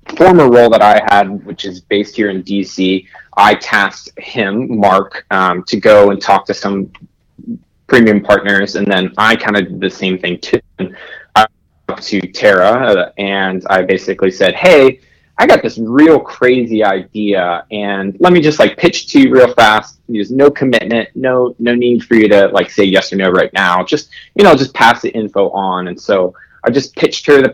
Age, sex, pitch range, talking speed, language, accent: 20-39, male, 95-120 Hz, 200 wpm, English, American